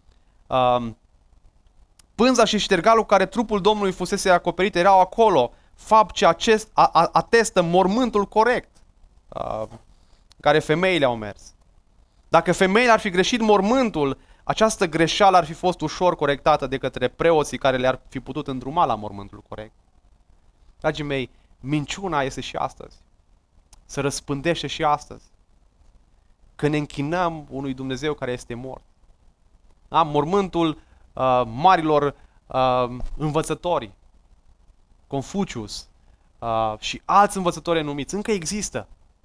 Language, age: Romanian, 20-39